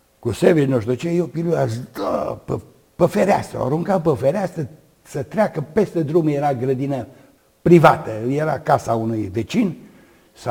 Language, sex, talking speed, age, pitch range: Romanian, male, 145 wpm, 60-79, 115-140 Hz